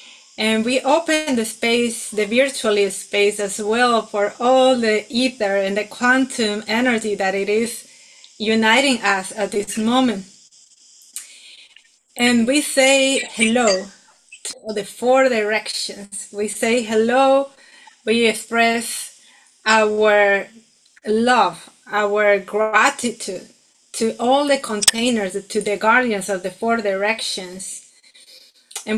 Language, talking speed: English, 115 wpm